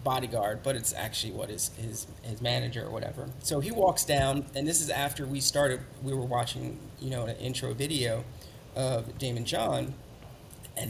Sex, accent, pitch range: male, American, 115-140 Hz